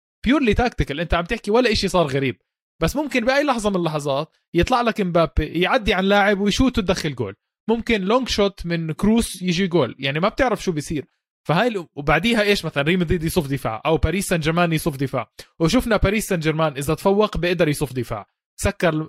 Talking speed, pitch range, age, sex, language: 190 wpm, 140-185 Hz, 20-39, male, Arabic